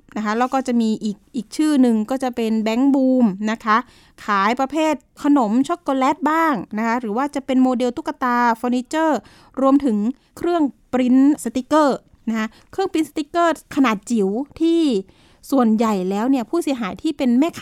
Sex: female